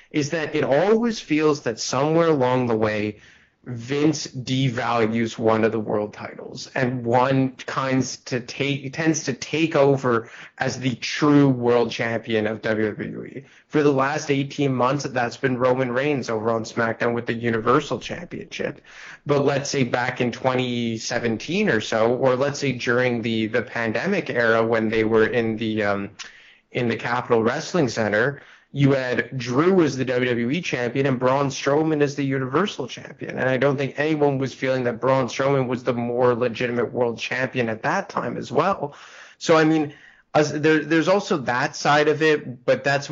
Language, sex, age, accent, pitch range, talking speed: English, male, 20-39, American, 115-145 Hz, 165 wpm